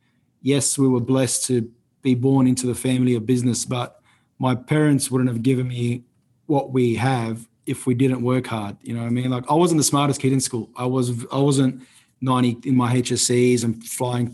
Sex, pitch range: male, 125-140 Hz